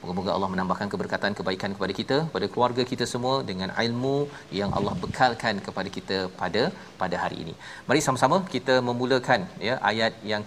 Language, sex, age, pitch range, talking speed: Malayalam, male, 40-59, 105-125 Hz, 165 wpm